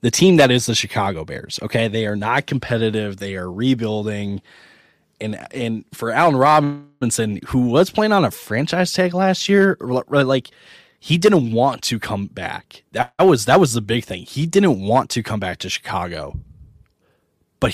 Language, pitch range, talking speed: English, 100-130 Hz, 175 wpm